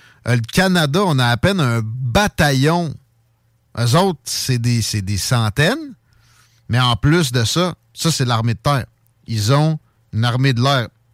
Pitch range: 115-150 Hz